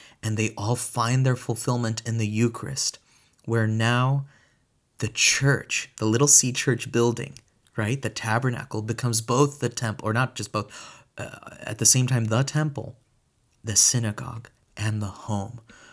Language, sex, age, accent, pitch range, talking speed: English, male, 30-49, American, 105-120 Hz, 155 wpm